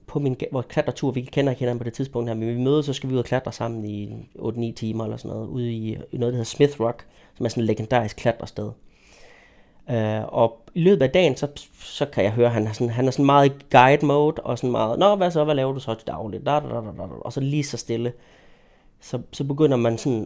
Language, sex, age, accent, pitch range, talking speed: Danish, male, 30-49, native, 115-145 Hz, 245 wpm